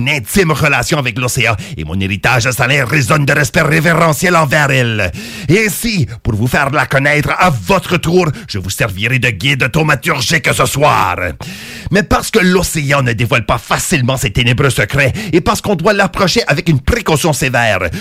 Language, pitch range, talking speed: English, 130-185 Hz, 175 wpm